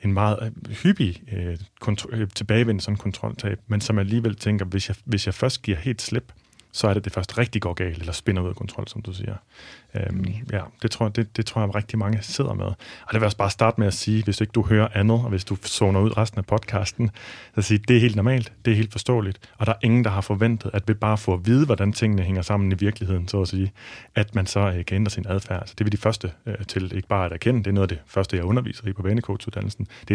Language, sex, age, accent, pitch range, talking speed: Danish, male, 30-49, native, 95-115 Hz, 265 wpm